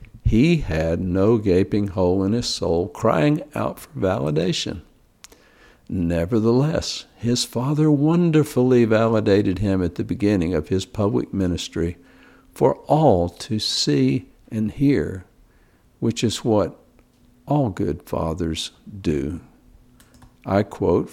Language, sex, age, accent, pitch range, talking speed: English, male, 60-79, American, 90-120 Hz, 115 wpm